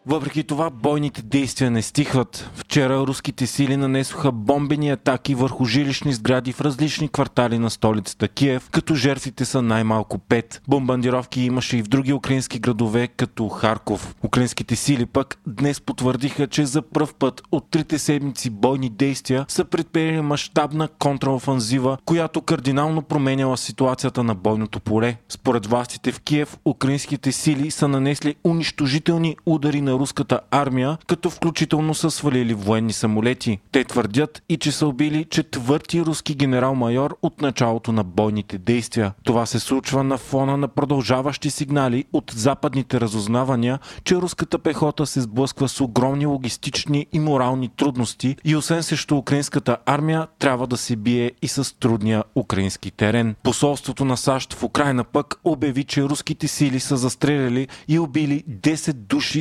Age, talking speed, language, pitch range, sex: 20-39, 145 wpm, Bulgarian, 125-150 Hz, male